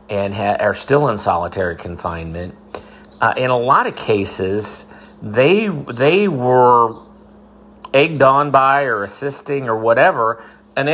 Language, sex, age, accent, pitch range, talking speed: English, male, 40-59, American, 105-135 Hz, 130 wpm